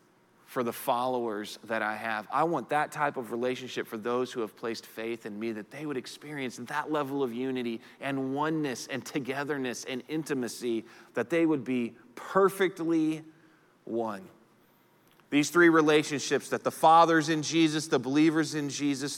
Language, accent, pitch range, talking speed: English, American, 140-200 Hz, 165 wpm